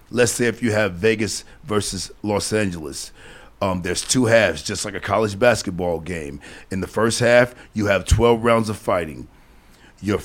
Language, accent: English, American